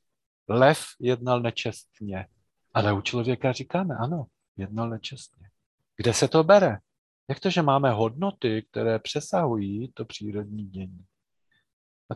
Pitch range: 110-140 Hz